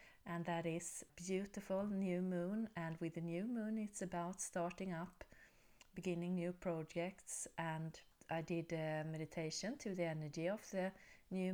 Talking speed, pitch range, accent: 150 wpm, 165-200 Hz, Swedish